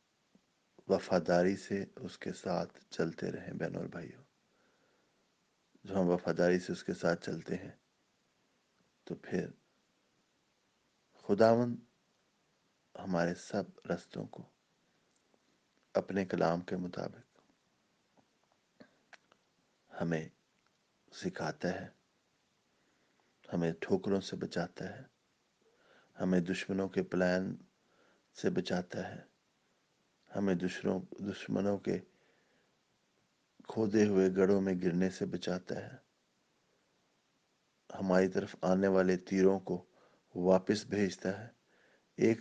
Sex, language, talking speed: male, English, 90 wpm